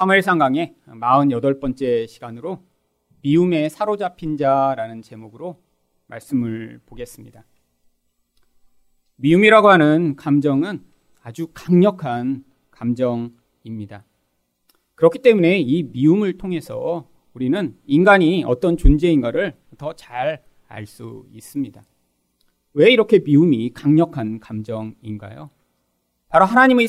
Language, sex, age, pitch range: Korean, male, 40-59, 110-185 Hz